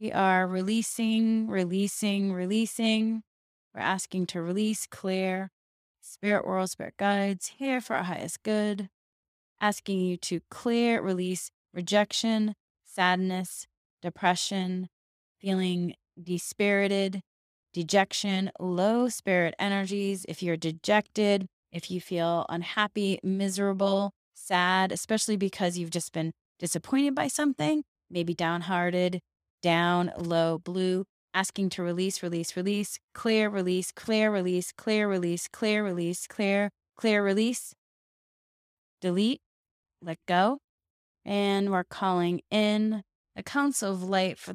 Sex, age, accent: female, 20-39, American